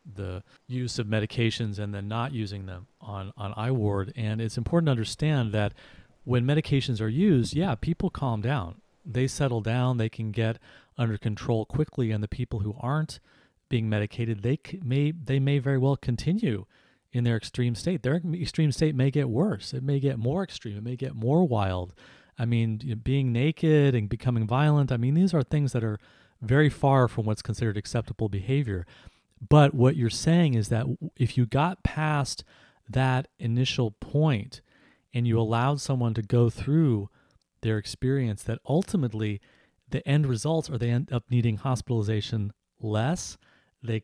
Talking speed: 170 wpm